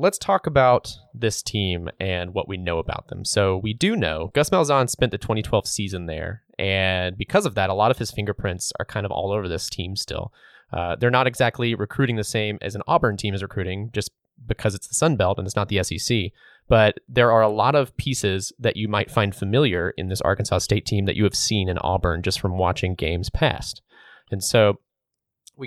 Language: English